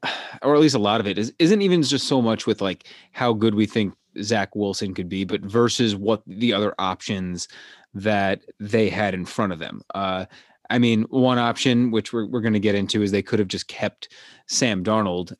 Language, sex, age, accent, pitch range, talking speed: English, male, 30-49, American, 95-115 Hz, 215 wpm